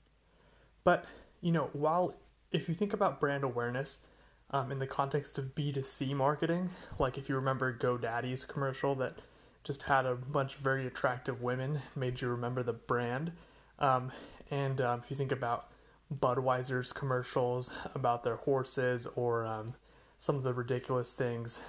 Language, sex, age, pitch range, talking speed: English, male, 20-39, 125-145 Hz, 155 wpm